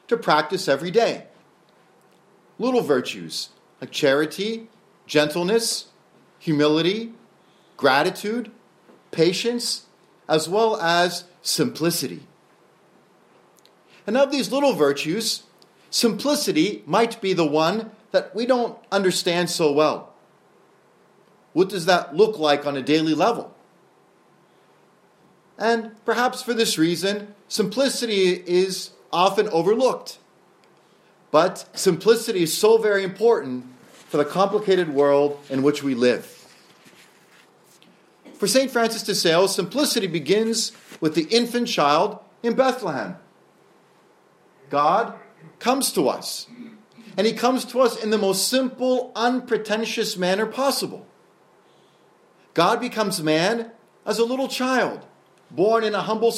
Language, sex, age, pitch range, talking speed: English, male, 40-59, 175-235 Hz, 110 wpm